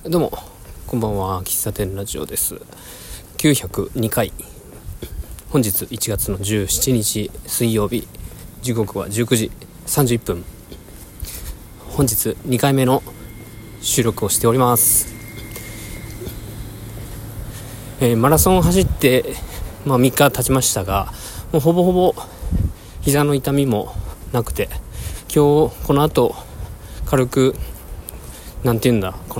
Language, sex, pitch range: Japanese, male, 90-125 Hz